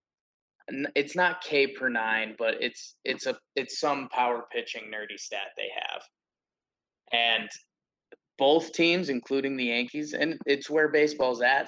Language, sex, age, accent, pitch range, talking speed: English, male, 20-39, American, 120-155 Hz, 145 wpm